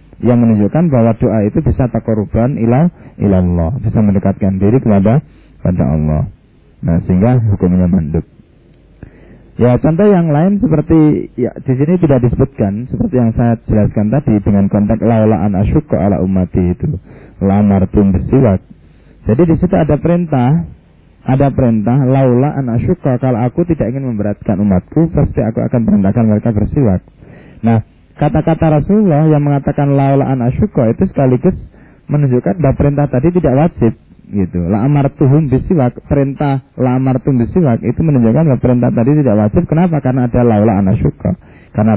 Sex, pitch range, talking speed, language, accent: male, 100-140 Hz, 145 wpm, Indonesian, native